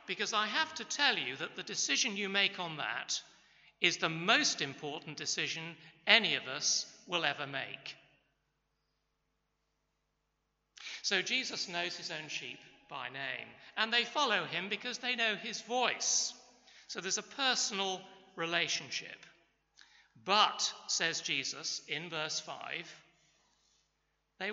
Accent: British